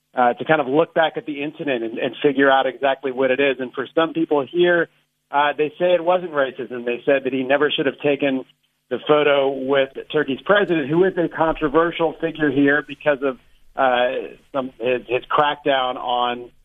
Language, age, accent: English, 40-59, American